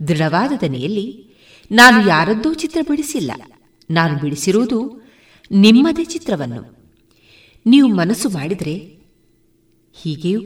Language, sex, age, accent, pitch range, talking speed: Kannada, female, 30-49, native, 155-220 Hz, 80 wpm